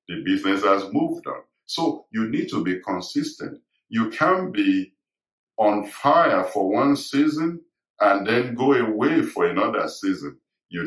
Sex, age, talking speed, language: male, 50-69, 150 wpm, English